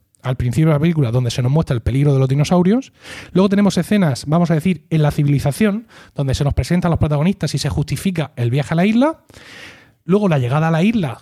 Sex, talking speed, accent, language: male, 230 wpm, Spanish, Spanish